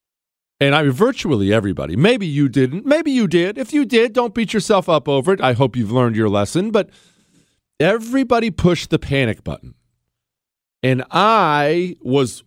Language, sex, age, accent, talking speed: English, male, 40-59, American, 170 wpm